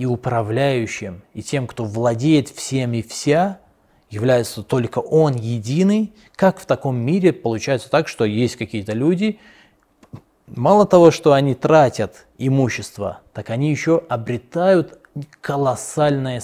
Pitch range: 110-140 Hz